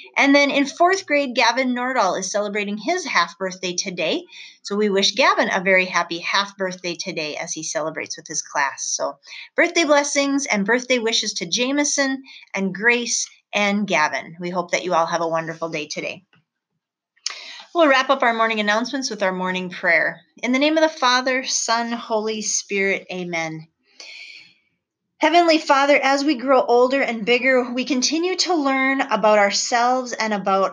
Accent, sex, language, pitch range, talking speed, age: American, female, English, 195-270 Hz, 170 wpm, 30-49